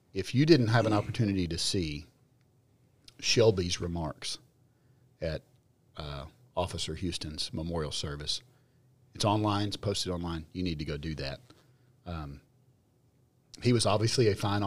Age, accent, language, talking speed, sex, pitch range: 40-59, American, English, 135 wpm, male, 90-125 Hz